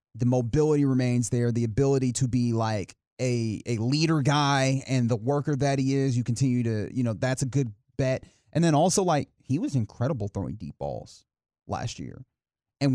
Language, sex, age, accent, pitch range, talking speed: English, male, 30-49, American, 115-145 Hz, 190 wpm